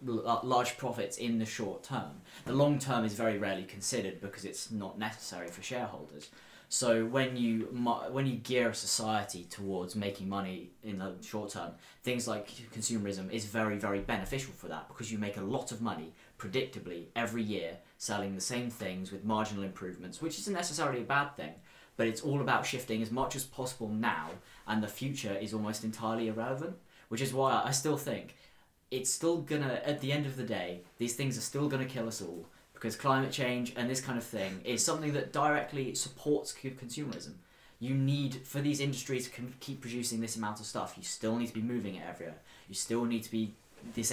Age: 20-39